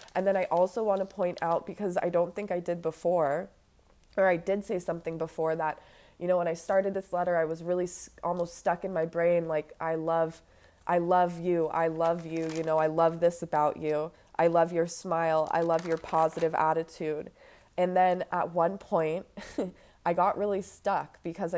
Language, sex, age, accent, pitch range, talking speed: English, female, 20-39, American, 160-180 Hz, 195 wpm